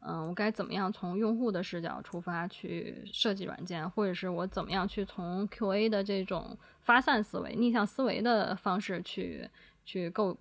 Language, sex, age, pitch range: Chinese, female, 20-39, 190-235 Hz